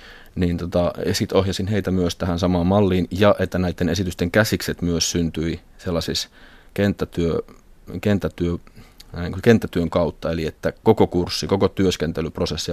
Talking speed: 125 wpm